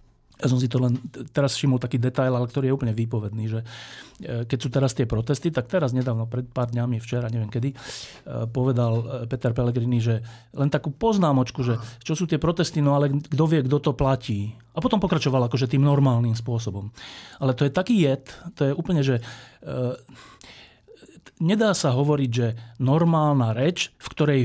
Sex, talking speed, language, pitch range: male, 175 wpm, Slovak, 120-160 Hz